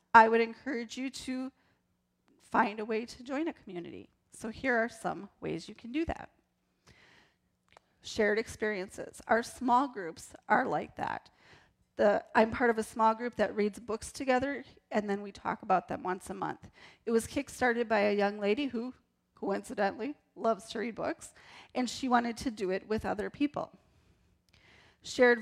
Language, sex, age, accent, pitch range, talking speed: English, female, 30-49, American, 210-250 Hz, 170 wpm